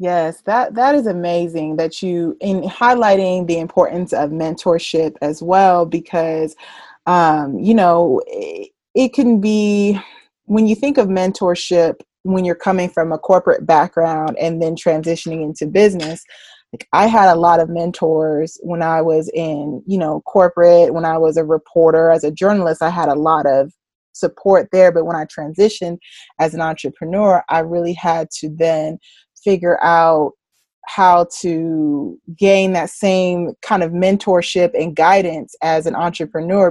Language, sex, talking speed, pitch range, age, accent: English, female, 155 wpm, 160-185 Hz, 20-39, American